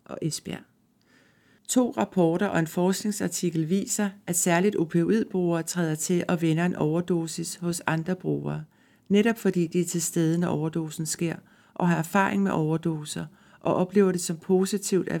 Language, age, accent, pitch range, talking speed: Danish, 60-79, native, 165-195 Hz, 155 wpm